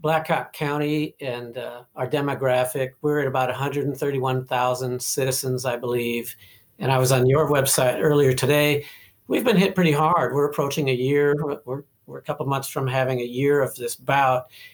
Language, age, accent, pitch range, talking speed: English, 50-69, American, 130-155 Hz, 175 wpm